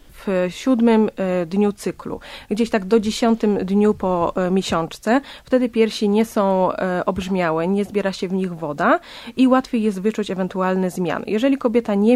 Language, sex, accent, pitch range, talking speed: Polish, female, native, 190-230 Hz, 155 wpm